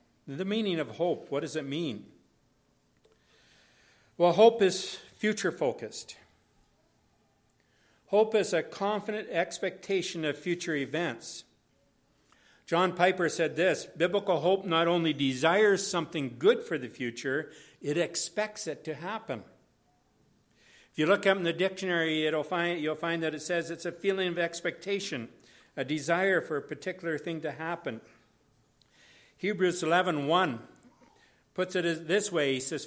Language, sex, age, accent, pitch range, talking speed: English, male, 60-79, American, 150-190 Hz, 135 wpm